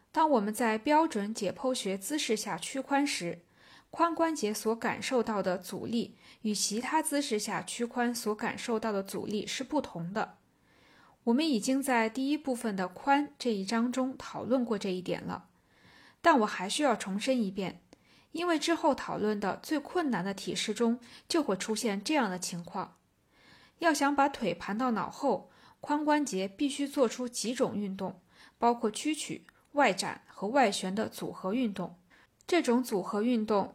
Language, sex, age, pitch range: Chinese, female, 20-39, 200-270 Hz